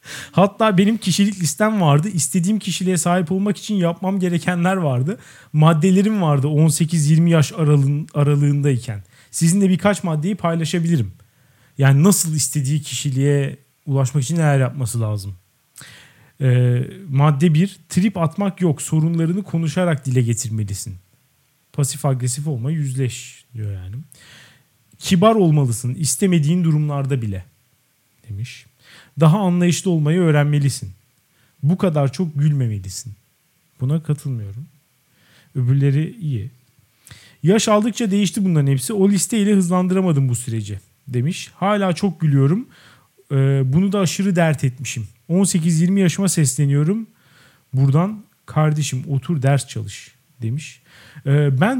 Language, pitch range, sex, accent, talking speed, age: Turkish, 130-180 Hz, male, native, 110 wpm, 40-59